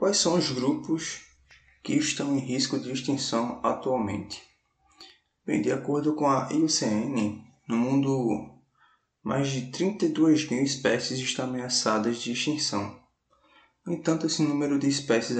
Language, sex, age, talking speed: Portuguese, male, 20-39, 135 wpm